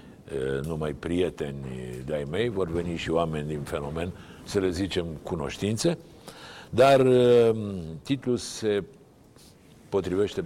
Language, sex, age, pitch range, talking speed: Romanian, male, 60-79, 80-100 Hz, 105 wpm